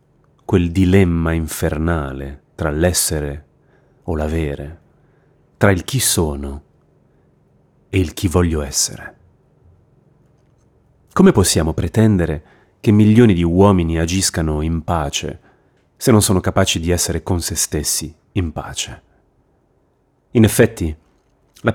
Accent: native